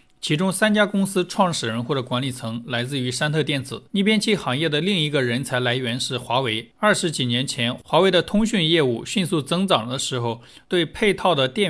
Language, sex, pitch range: Chinese, male, 125-170 Hz